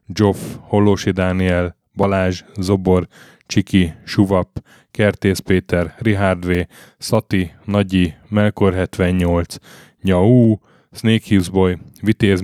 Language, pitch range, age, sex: Hungarian, 90-105 Hz, 10-29, male